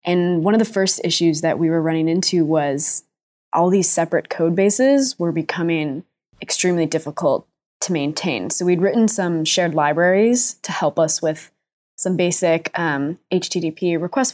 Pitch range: 165-195 Hz